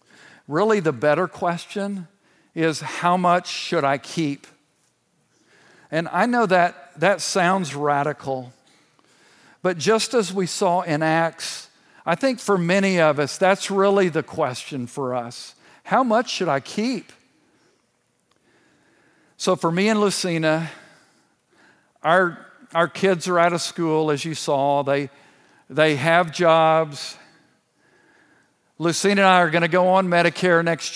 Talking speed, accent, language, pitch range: 135 wpm, American, English, 155-185 Hz